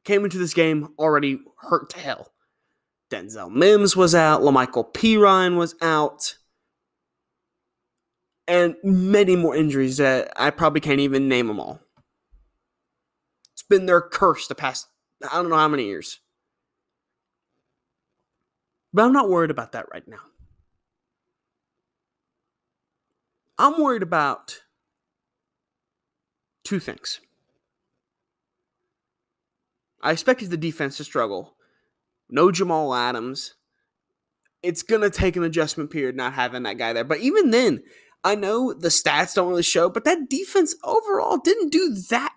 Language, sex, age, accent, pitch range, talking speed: English, male, 30-49, American, 140-215 Hz, 130 wpm